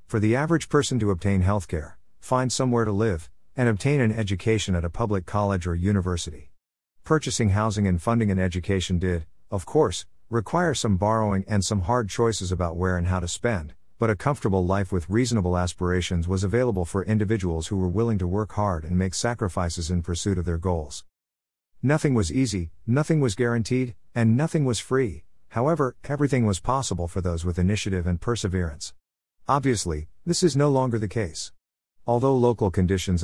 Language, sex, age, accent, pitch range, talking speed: English, male, 50-69, American, 90-115 Hz, 175 wpm